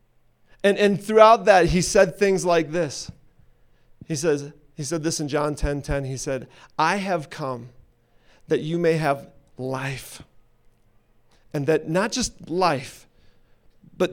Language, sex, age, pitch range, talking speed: English, male, 40-59, 145-190 Hz, 145 wpm